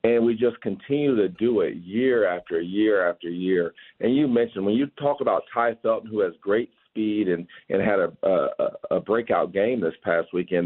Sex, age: male, 50-69